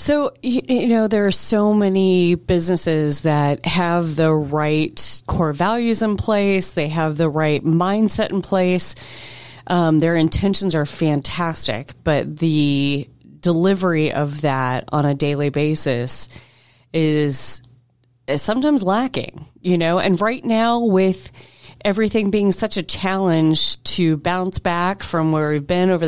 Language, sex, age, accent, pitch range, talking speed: English, female, 30-49, American, 145-185 Hz, 140 wpm